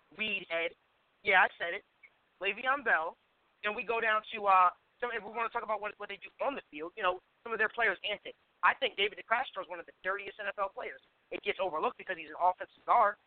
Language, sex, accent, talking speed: English, male, American, 240 wpm